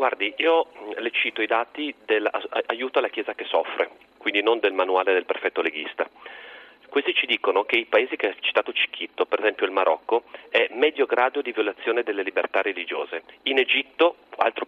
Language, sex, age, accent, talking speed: Italian, male, 40-59, native, 175 wpm